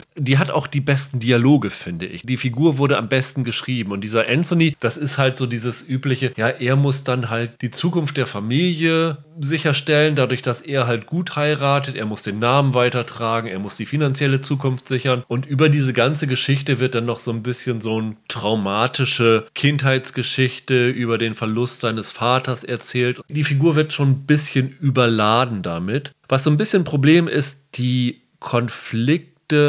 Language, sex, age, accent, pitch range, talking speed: German, male, 30-49, German, 115-145 Hz, 175 wpm